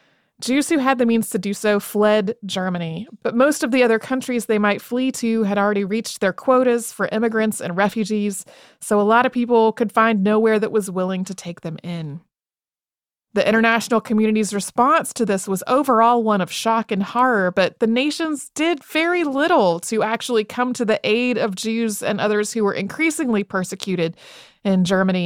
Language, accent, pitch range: English, American, 185-225 Hz